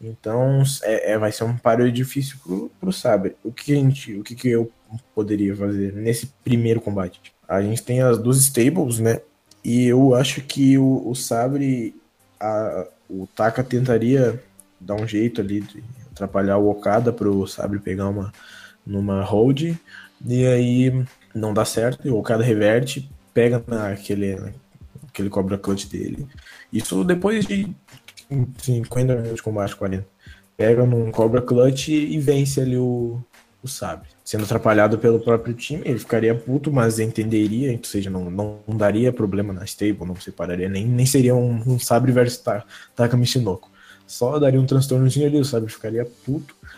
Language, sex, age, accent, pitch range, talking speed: Portuguese, male, 20-39, Brazilian, 105-130 Hz, 160 wpm